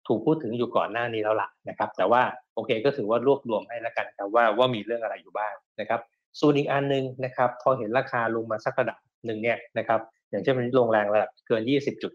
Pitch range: 105-135 Hz